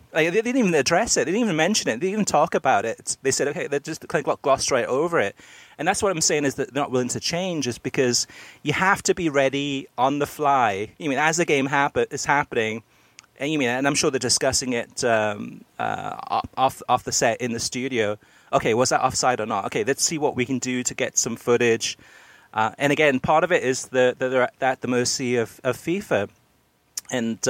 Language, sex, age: English, male, 30-49